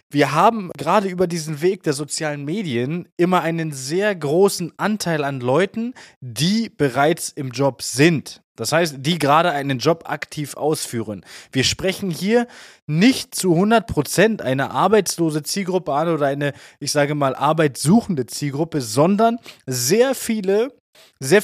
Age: 20-39